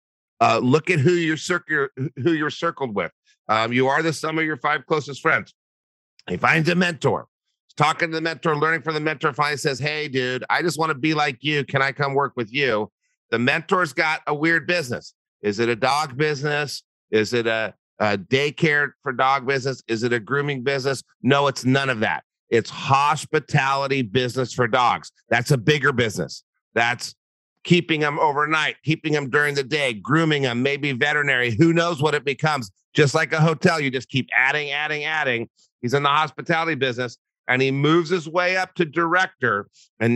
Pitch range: 120-155 Hz